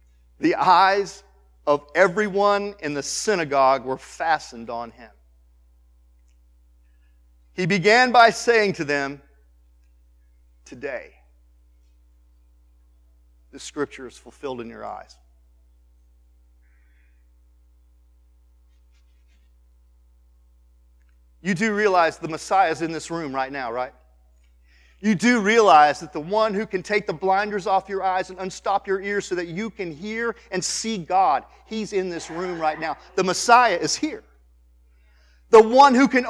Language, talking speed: English, 125 wpm